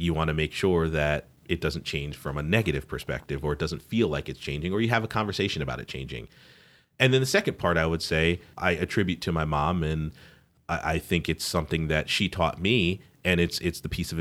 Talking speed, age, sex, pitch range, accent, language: 235 wpm, 30-49, male, 80-95 Hz, American, English